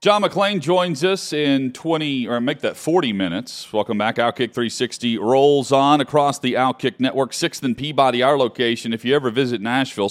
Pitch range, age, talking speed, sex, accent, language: 100-125 Hz, 40-59, 185 wpm, male, American, English